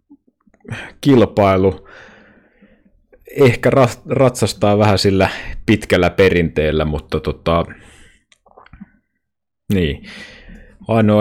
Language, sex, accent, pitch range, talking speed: Finnish, male, native, 85-110 Hz, 60 wpm